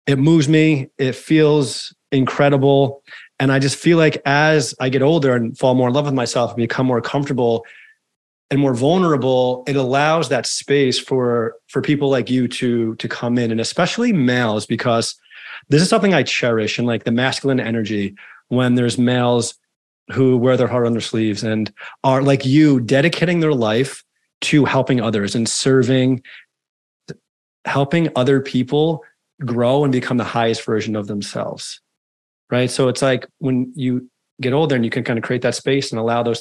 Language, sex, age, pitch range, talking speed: English, male, 30-49, 120-145 Hz, 175 wpm